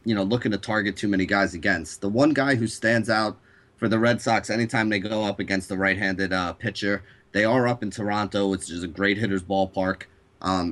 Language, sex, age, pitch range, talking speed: English, male, 30-49, 95-115 Hz, 230 wpm